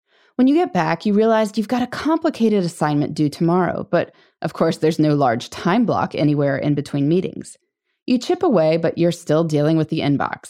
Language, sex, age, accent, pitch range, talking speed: English, female, 20-39, American, 155-205 Hz, 200 wpm